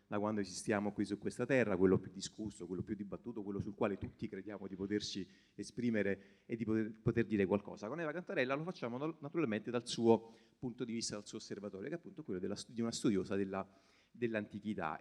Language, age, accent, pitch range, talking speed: Italian, 30-49, native, 100-120 Hz, 205 wpm